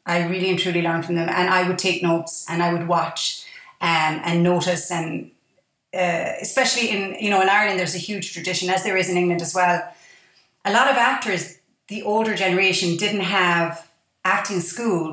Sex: female